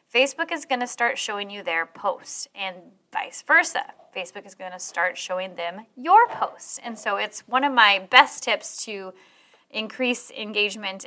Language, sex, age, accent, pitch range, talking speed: English, female, 20-39, American, 205-280 Hz, 175 wpm